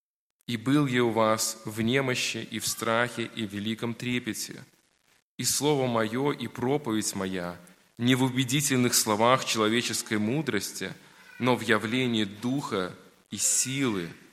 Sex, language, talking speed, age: male, Russian, 135 wpm, 20-39